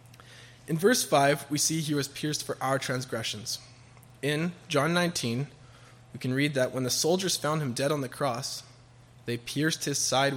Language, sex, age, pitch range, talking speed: English, male, 20-39, 120-140 Hz, 180 wpm